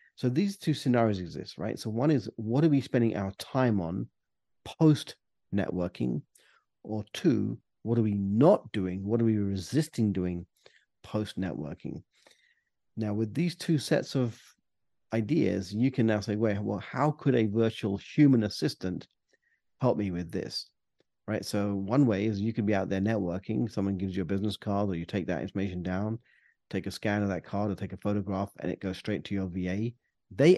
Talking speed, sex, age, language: 185 wpm, male, 40-59, English